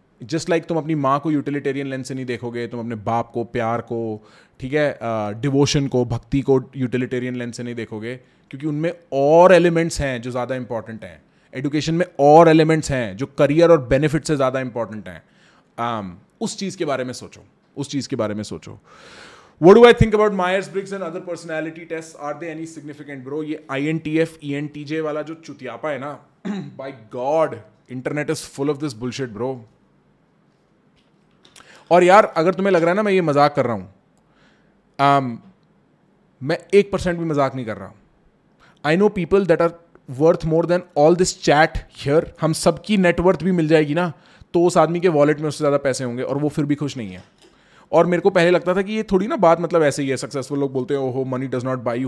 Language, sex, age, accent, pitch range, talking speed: English, male, 20-39, Indian, 125-170 Hz, 170 wpm